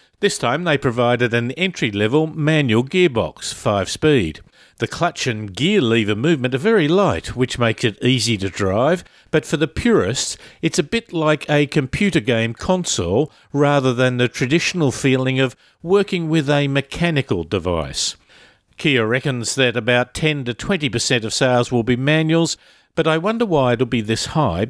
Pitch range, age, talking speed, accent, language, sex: 115-155 Hz, 50-69, 160 wpm, Australian, English, male